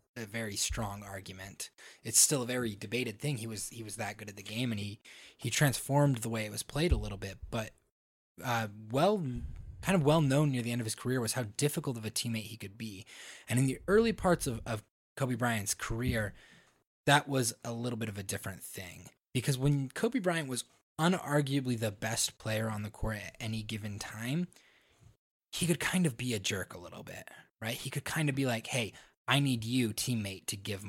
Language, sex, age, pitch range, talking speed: English, male, 20-39, 110-140 Hz, 220 wpm